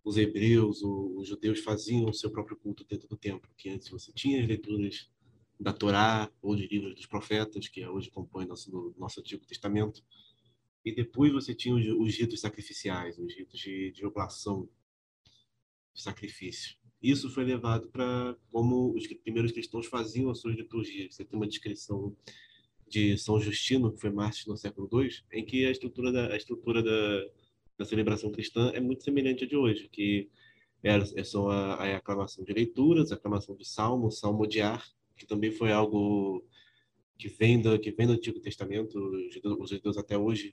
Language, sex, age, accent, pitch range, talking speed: Portuguese, male, 20-39, Brazilian, 100-115 Hz, 180 wpm